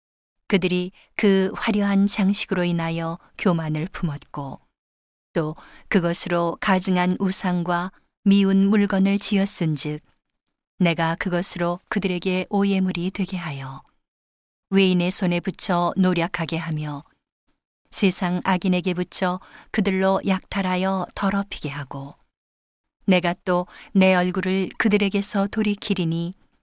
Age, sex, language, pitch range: 40-59, female, Korean, 165-195 Hz